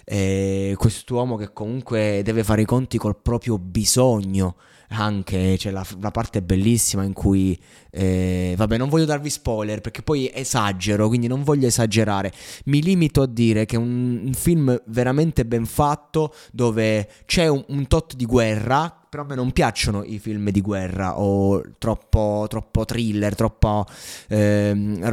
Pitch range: 105-125 Hz